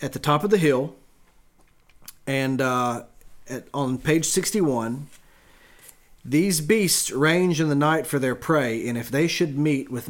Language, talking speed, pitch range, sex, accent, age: English, 155 wpm, 115-150 Hz, male, American, 40-59